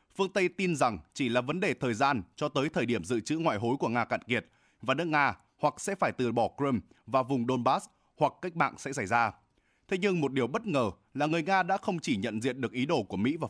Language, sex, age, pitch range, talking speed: Vietnamese, male, 20-39, 120-160 Hz, 265 wpm